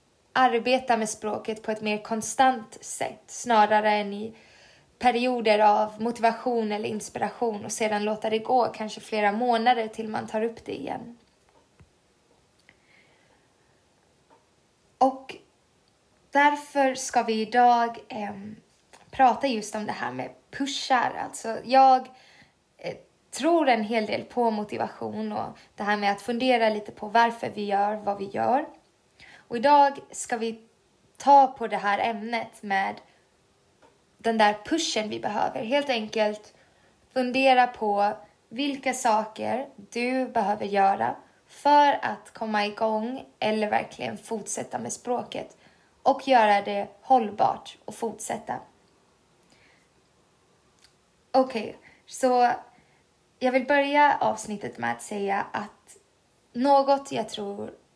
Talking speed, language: 120 wpm, Swedish